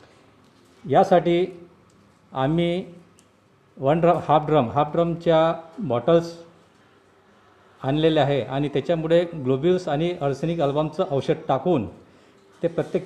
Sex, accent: male, native